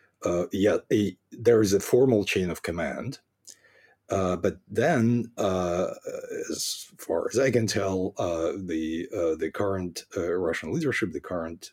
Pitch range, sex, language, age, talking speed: 95-130 Hz, male, English, 50-69, 155 wpm